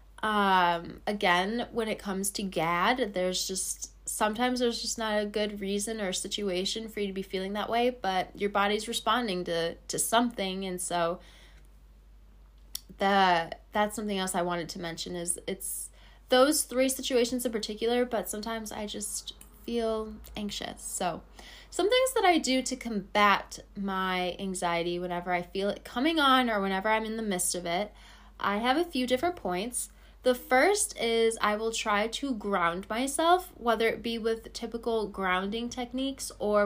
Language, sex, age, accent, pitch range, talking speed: English, female, 20-39, American, 190-230 Hz, 165 wpm